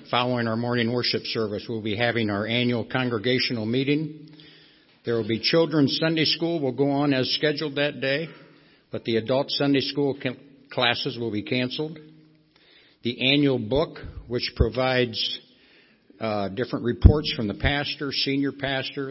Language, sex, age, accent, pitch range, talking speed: English, male, 60-79, American, 115-140 Hz, 150 wpm